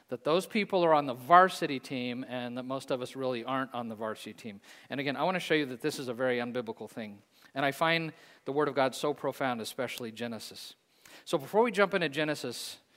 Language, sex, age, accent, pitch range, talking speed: English, male, 40-59, American, 130-175 Hz, 230 wpm